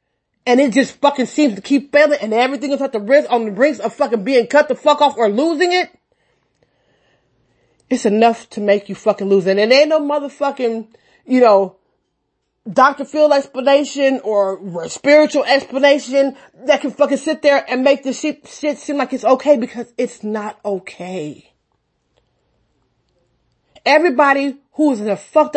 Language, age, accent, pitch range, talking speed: English, 30-49, American, 215-285 Hz, 165 wpm